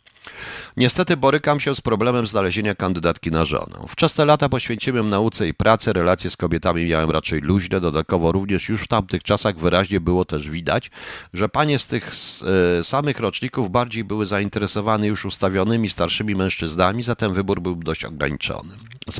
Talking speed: 155 wpm